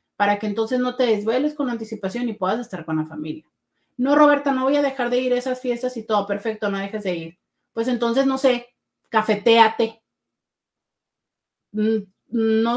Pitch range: 210-280 Hz